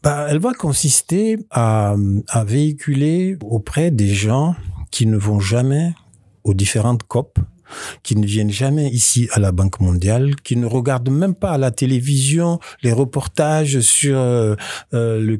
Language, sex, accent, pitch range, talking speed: English, male, French, 100-125 Hz, 150 wpm